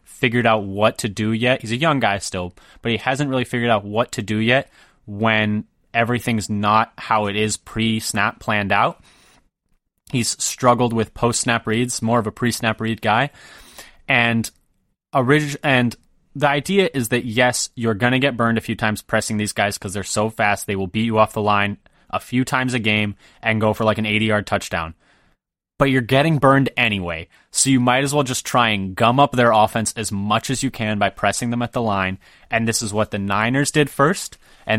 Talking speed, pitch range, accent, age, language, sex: 205 wpm, 105-125 Hz, American, 20-39, English, male